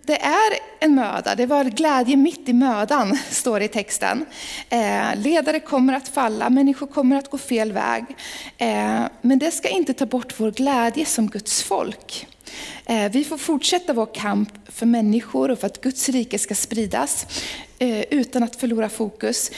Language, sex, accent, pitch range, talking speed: Swedish, female, native, 225-290 Hz, 160 wpm